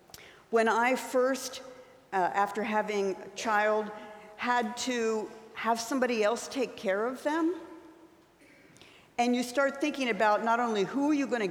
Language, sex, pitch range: English, female, 180-245 Hz